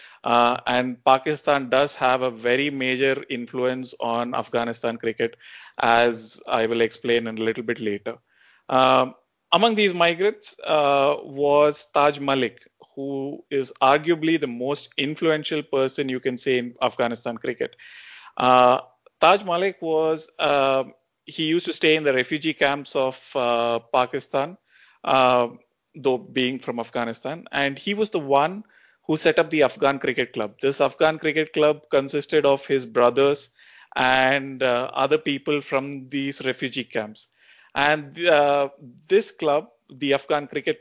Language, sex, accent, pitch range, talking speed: English, male, Indian, 125-155 Hz, 140 wpm